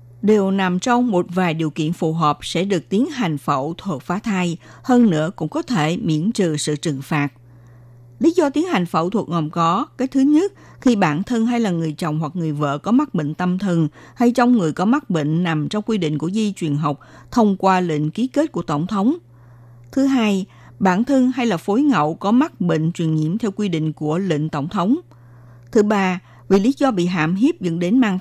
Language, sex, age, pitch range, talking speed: Vietnamese, female, 50-69, 155-225 Hz, 225 wpm